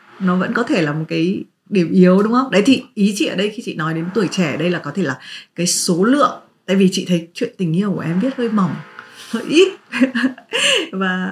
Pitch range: 170-220 Hz